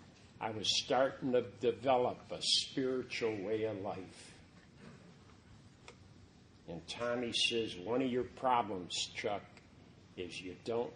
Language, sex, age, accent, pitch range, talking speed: English, male, 50-69, American, 115-165 Hz, 115 wpm